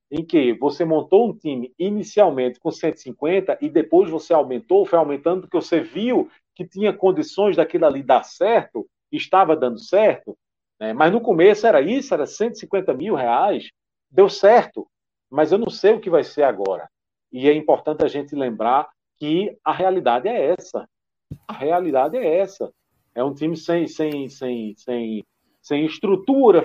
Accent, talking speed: Brazilian, 160 wpm